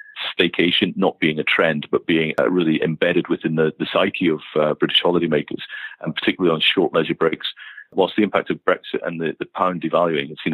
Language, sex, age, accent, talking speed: English, male, 40-59, British, 205 wpm